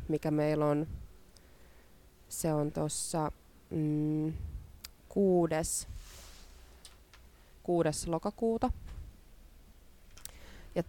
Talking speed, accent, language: 55 wpm, native, Finnish